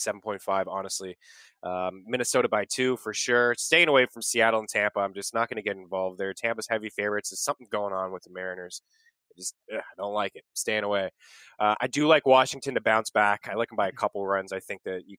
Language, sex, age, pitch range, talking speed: English, male, 20-39, 100-125 Hz, 235 wpm